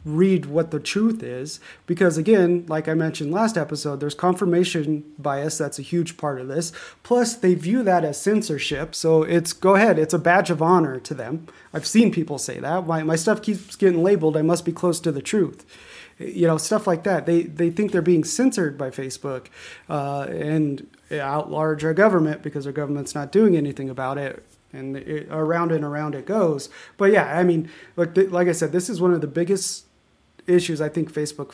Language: English